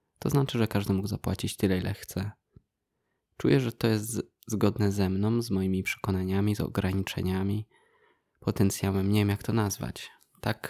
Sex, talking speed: male, 165 wpm